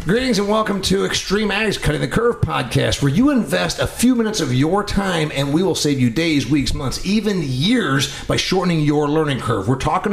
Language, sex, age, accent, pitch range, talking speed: English, male, 40-59, American, 120-160 Hz, 215 wpm